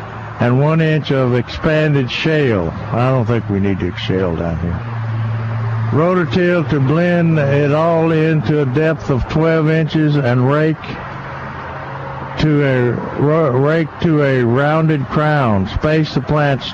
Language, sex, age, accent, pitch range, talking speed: English, male, 60-79, American, 115-150 Hz, 135 wpm